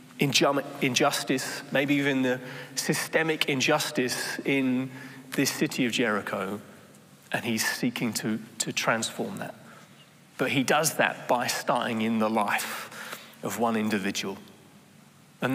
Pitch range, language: 115-140 Hz, English